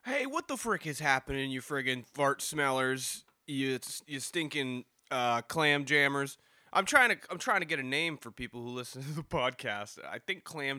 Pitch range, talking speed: 125-190 Hz, 200 wpm